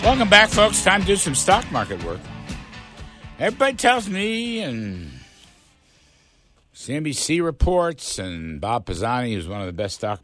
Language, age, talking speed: English, 60-79, 145 wpm